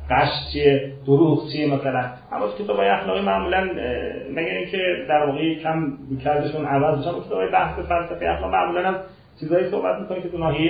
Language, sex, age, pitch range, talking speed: Persian, male, 40-59, 135-180 Hz, 155 wpm